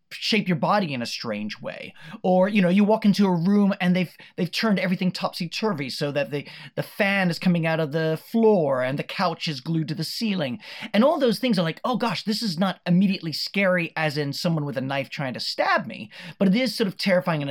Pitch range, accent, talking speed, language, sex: 155-205 Hz, American, 240 wpm, English, male